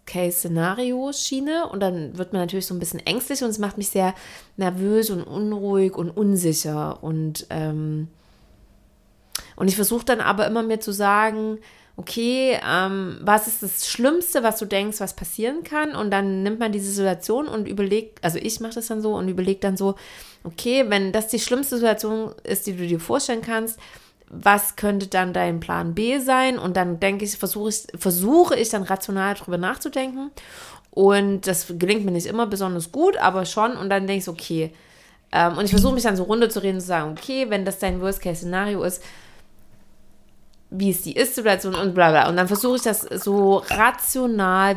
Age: 30-49